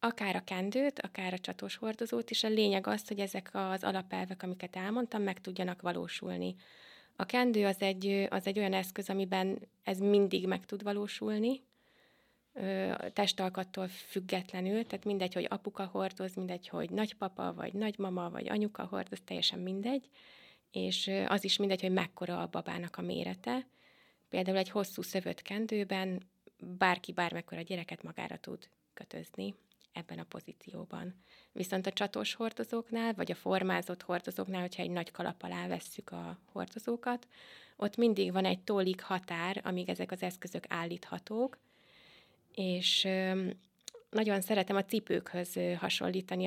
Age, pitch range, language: 20-39, 185-215 Hz, Hungarian